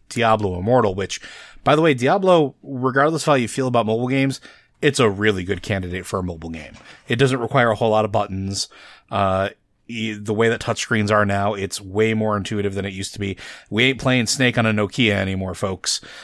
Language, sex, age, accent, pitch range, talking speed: English, male, 30-49, American, 105-135 Hz, 210 wpm